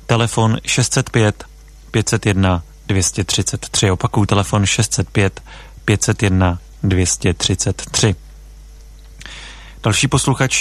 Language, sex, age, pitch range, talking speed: Czech, male, 30-49, 95-115 Hz, 60 wpm